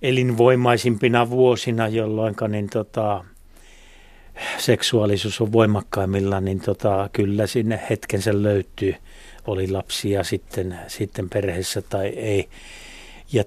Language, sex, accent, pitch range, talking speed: Finnish, male, native, 100-120 Hz, 105 wpm